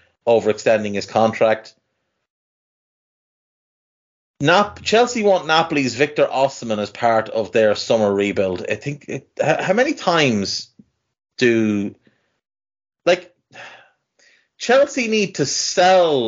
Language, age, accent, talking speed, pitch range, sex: English, 30-49, Irish, 100 wpm, 110-150 Hz, male